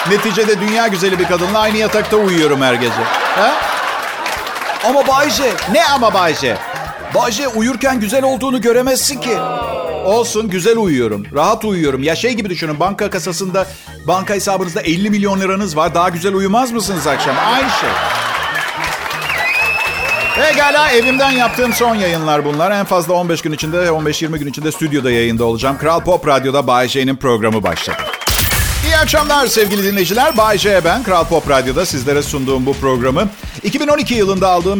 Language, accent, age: Turkish, native, 50-69